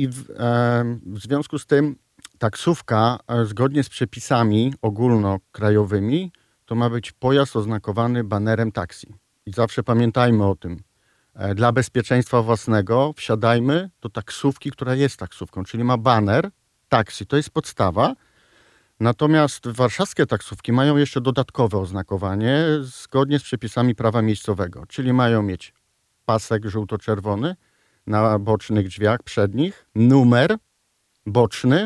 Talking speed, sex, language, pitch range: 115 wpm, male, Polish, 110-140 Hz